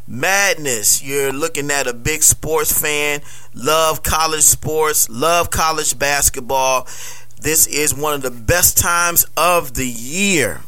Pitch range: 130-155 Hz